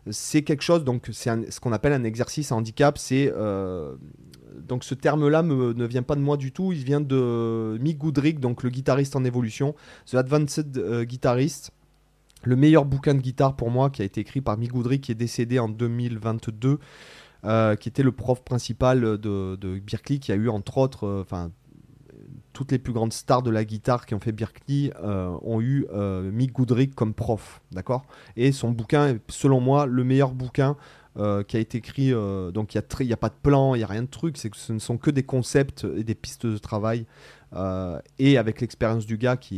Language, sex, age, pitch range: French, male, 30-49, 110-140 Hz